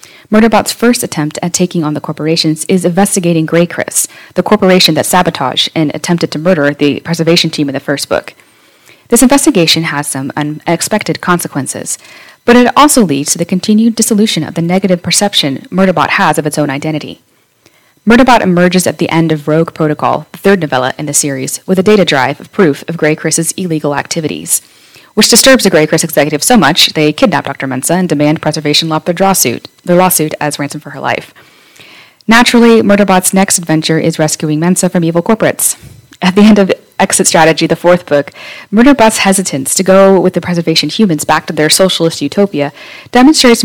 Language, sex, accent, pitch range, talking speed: English, female, American, 155-195 Hz, 185 wpm